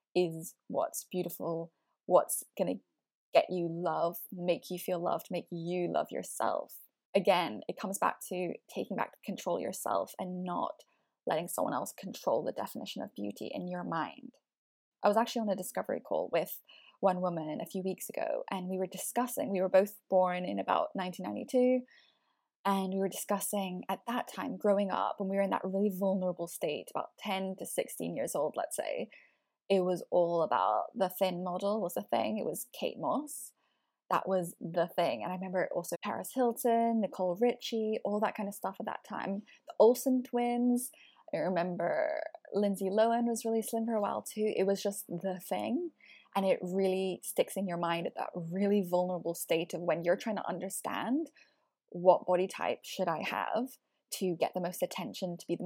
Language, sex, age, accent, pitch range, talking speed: English, female, 10-29, British, 180-220 Hz, 190 wpm